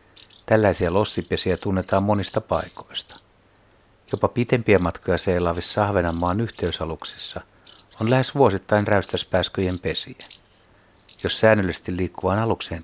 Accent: native